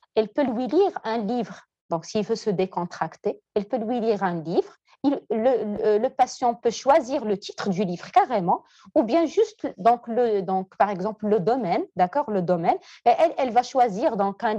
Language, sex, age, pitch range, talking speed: French, female, 40-59, 195-275 Hz, 200 wpm